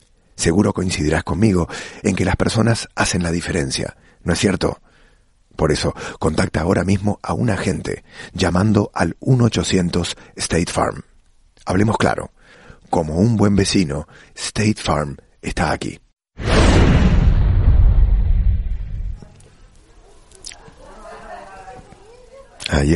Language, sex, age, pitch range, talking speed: English, male, 40-59, 80-95 Hz, 90 wpm